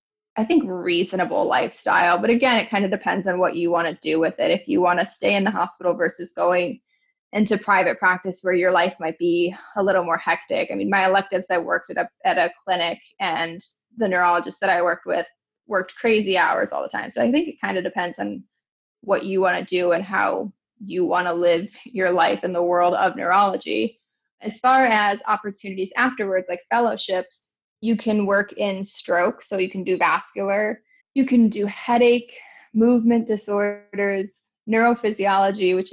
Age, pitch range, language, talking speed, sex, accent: 20-39, 180-225 Hz, English, 190 wpm, female, American